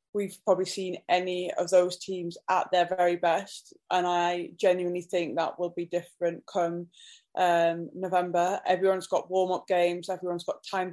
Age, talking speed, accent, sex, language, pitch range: 20-39, 160 wpm, British, female, English, 175-205 Hz